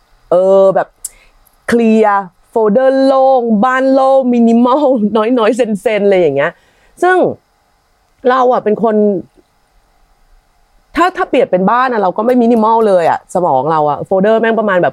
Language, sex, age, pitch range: Thai, female, 30-49, 180-260 Hz